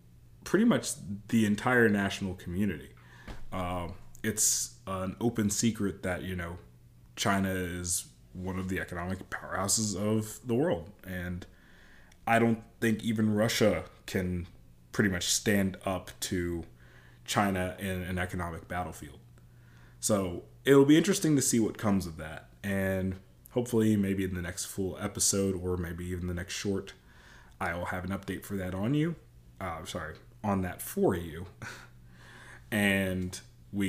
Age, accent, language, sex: 20-39, American, English, male